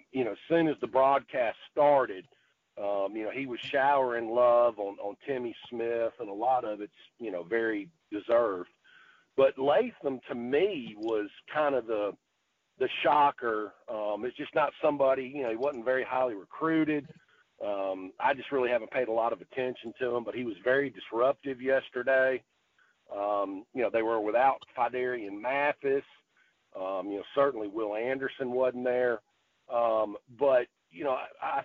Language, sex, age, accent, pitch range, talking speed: English, male, 50-69, American, 115-145 Hz, 175 wpm